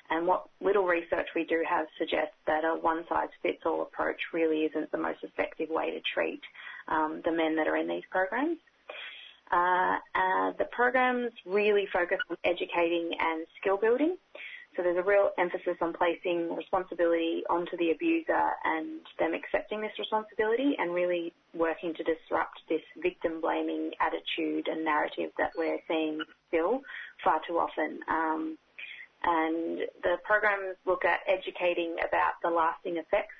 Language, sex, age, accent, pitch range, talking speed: English, female, 30-49, Australian, 165-215 Hz, 145 wpm